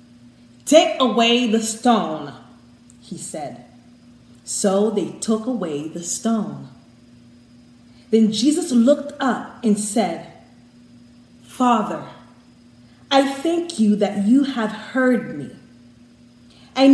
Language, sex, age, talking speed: English, female, 30-49, 100 wpm